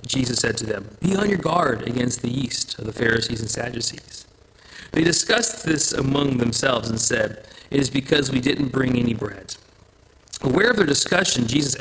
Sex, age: male, 40-59